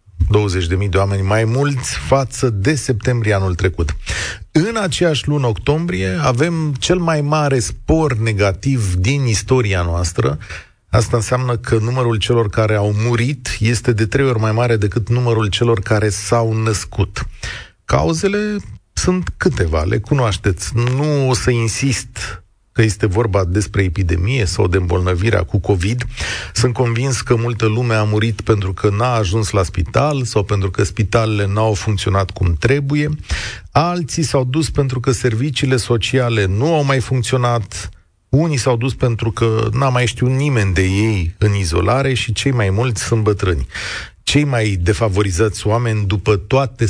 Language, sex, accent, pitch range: Romanian, male, native, 100-130 Hz